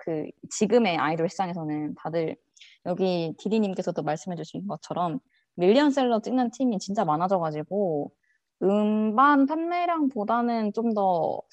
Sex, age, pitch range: female, 20-39, 190-260 Hz